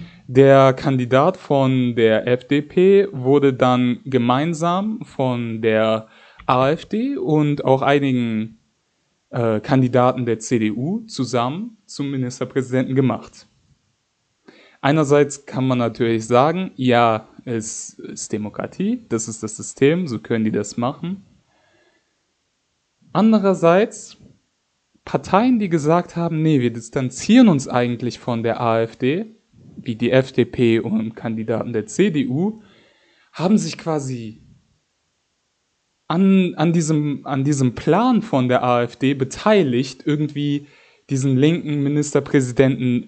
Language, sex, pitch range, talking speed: German, male, 120-155 Hz, 105 wpm